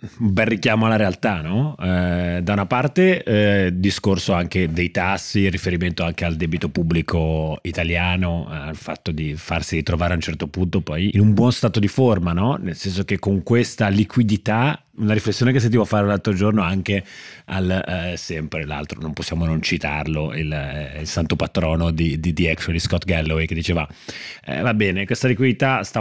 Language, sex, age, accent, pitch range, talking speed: Italian, male, 30-49, native, 90-110 Hz, 185 wpm